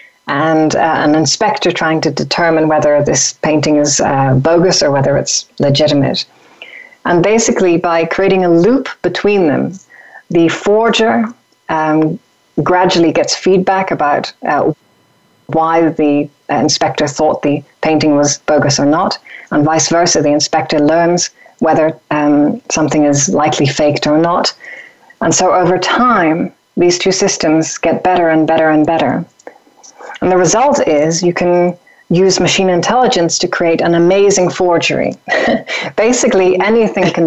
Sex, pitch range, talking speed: female, 155-190 Hz, 140 wpm